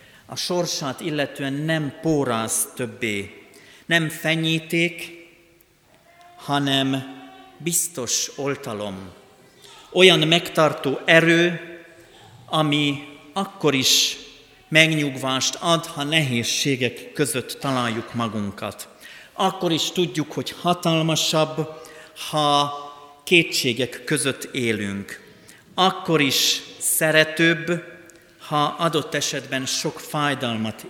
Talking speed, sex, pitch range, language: 80 wpm, male, 115-155 Hz, Hungarian